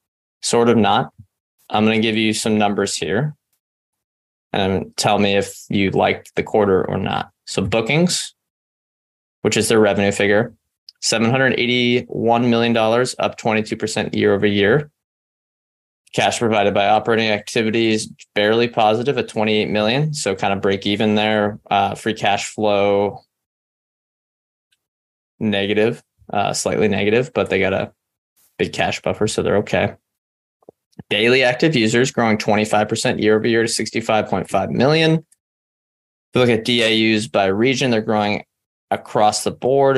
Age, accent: 20-39, American